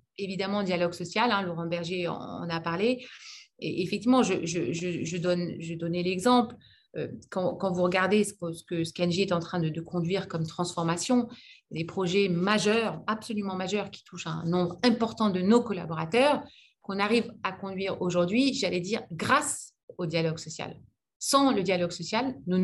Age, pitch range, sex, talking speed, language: 30-49, 175-230 Hz, female, 165 wpm, French